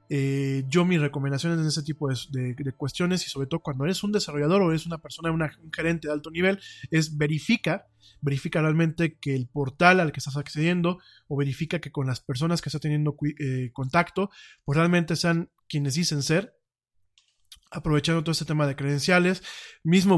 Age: 20-39